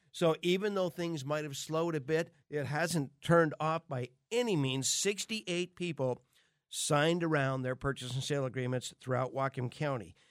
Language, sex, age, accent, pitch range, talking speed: English, male, 50-69, American, 130-165 Hz, 165 wpm